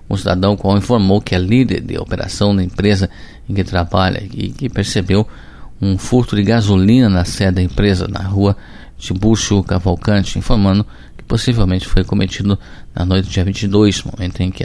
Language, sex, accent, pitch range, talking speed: Portuguese, male, Brazilian, 90-105 Hz, 170 wpm